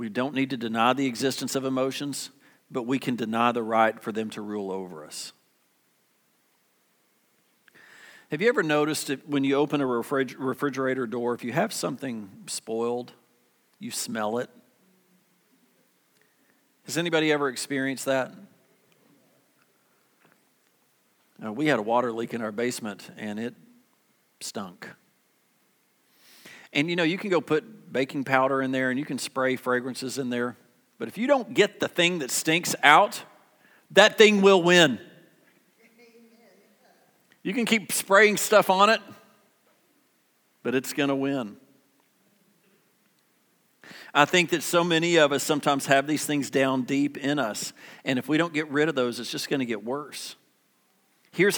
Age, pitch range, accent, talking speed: 50-69, 130-175 Hz, American, 150 wpm